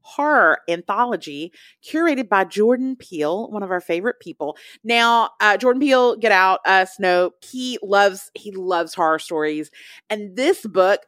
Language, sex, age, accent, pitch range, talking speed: English, female, 30-49, American, 180-280 Hz, 155 wpm